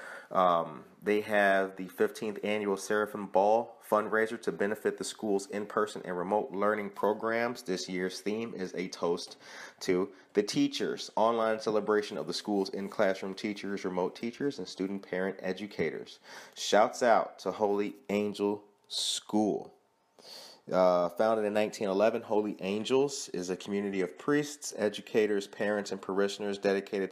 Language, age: English, 30-49